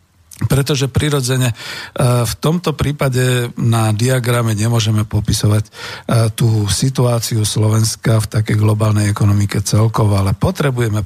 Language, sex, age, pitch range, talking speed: Slovak, male, 50-69, 105-125 Hz, 105 wpm